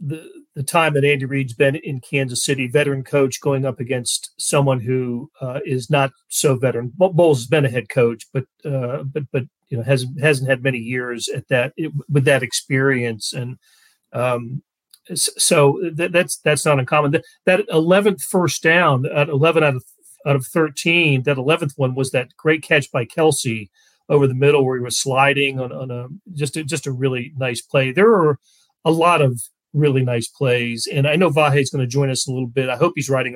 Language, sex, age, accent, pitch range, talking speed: English, male, 40-59, American, 130-155 Hz, 200 wpm